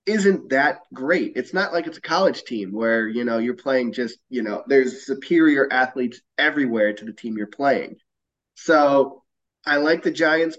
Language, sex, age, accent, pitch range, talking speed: English, male, 20-39, American, 120-165 Hz, 180 wpm